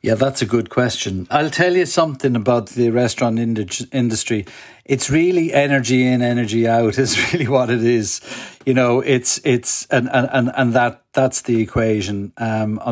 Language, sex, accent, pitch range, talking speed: English, male, Irish, 110-135 Hz, 170 wpm